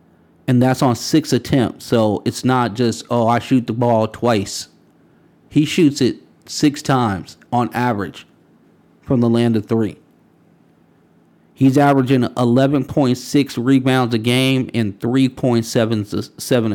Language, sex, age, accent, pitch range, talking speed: English, male, 40-59, American, 115-135 Hz, 125 wpm